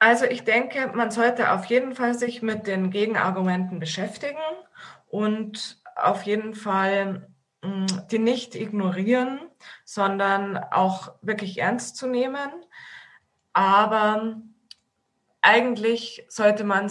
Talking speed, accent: 105 wpm, German